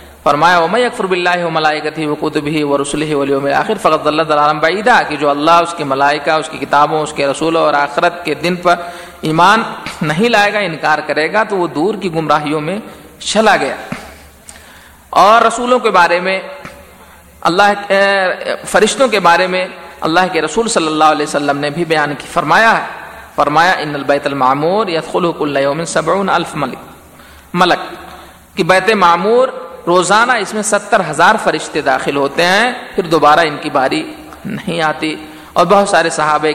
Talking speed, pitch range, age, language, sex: 170 wpm, 150-185 Hz, 50-69, Urdu, male